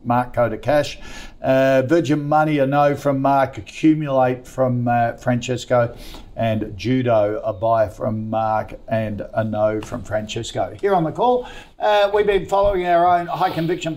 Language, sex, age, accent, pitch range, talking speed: English, male, 50-69, Australian, 115-140 Hz, 165 wpm